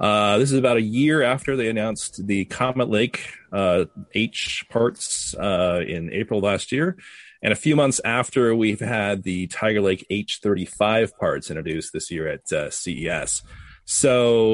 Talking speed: 160 wpm